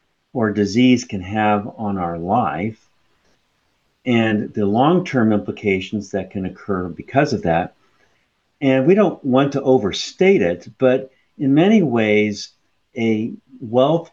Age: 50-69